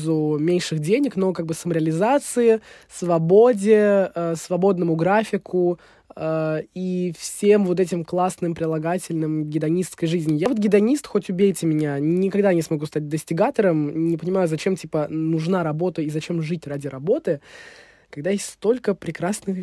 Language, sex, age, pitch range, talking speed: Russian, male, 20-39, 160-195 Hz, 140 wpm